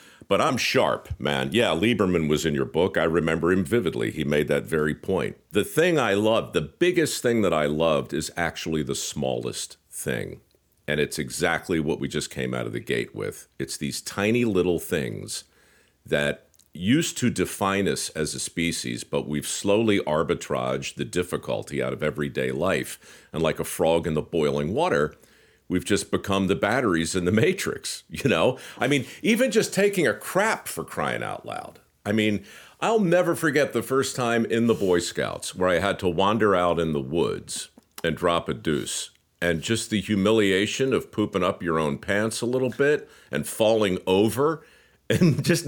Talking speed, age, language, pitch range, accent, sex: 185 wpm, 50-69, English, 80-120 Hz, American, male